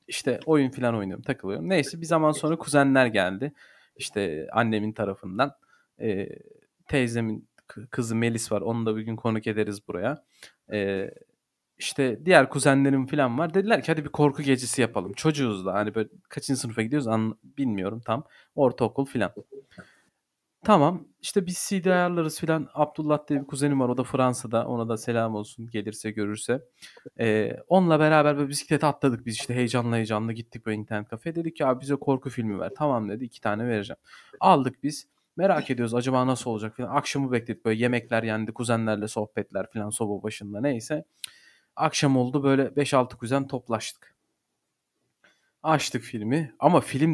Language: Turkish